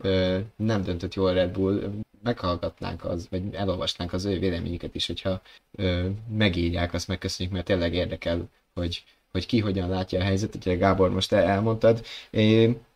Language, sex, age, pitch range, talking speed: Hungarian, male, 20-39, 95-115 Hz, 150 wpm